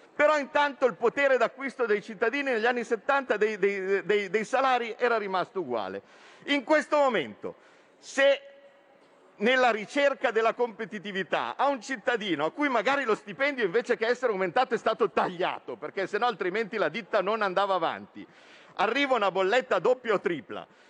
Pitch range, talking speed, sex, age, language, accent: 200-270 Hz, 150 wpm, male, 50-69, Italian, native